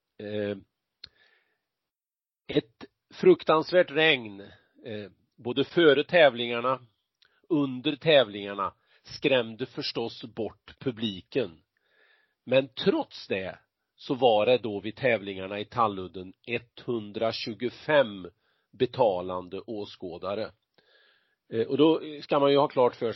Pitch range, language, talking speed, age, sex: 105-150 Hz, Swedish, 90 wpm, 40-59, male